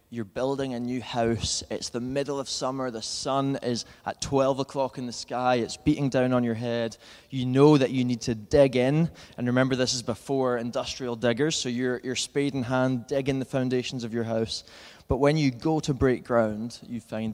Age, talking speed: 20-39, 215 wpm